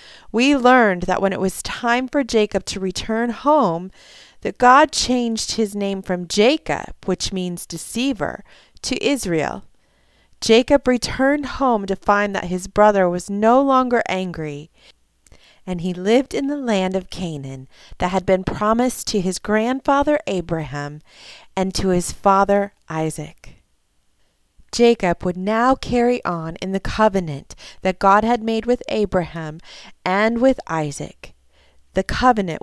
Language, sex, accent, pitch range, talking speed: English, female, American, 180-230 Hz, 140 wpm